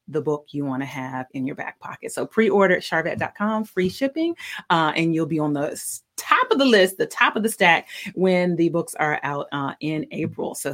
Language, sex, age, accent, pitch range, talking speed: English, female, 30-49, American, 170-225 Hz, 225 wpm